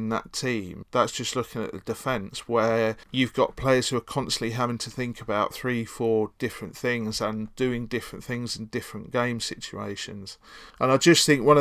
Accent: British